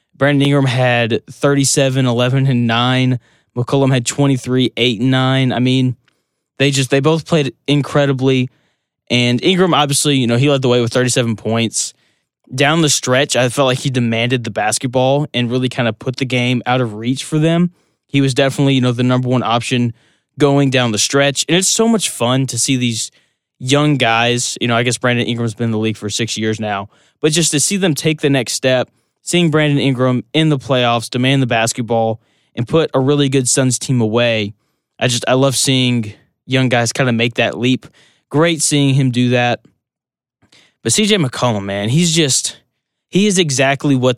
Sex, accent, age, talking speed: male, American, 20-39, 195 wpm